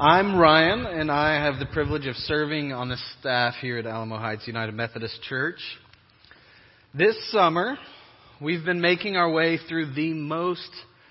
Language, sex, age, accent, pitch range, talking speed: English, male, 30-49, American, 120-160 Hz, 155 wpm